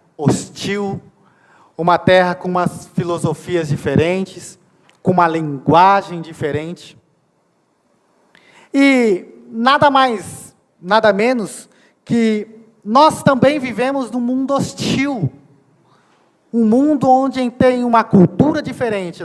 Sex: male